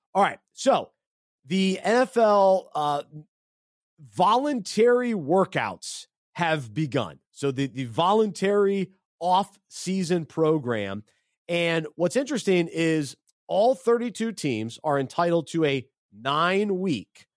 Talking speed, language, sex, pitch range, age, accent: 95 wpm, English, male, 150-190 Hz, 30-49, American